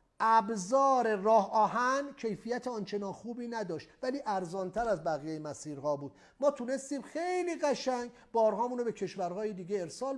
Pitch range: 195-275 Hz